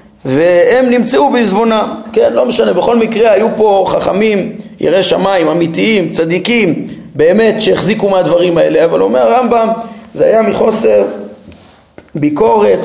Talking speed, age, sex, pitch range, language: 125 wpm, 40-59, male, 160-220 Hz, Hebrew